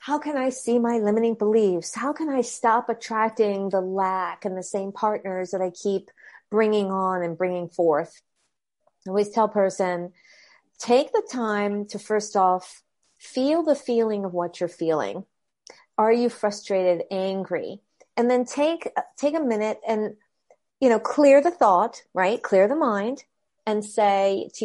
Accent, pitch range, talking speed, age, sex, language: American, 190-240 Hz, 160 wpm, 40-59, female, English